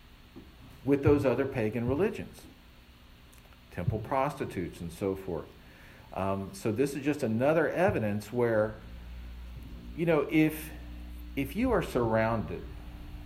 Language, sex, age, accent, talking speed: English, male, 50-69, American, 115 wpm